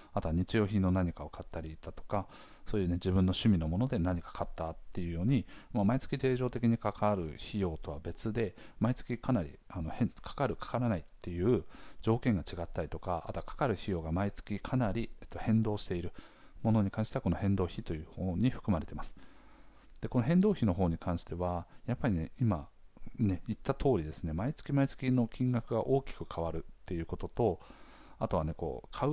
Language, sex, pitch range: Japanese, male, 85-120 Hz